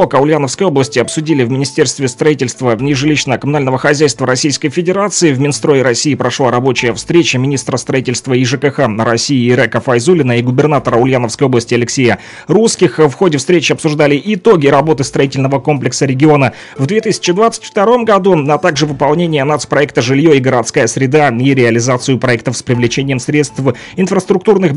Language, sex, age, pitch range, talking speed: Russian, male, 30-49, 130-165 Hz, 140 wpm